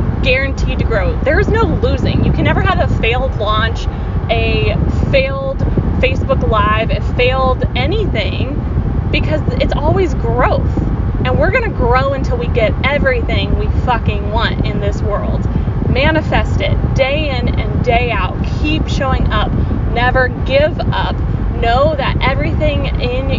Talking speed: 145 wpm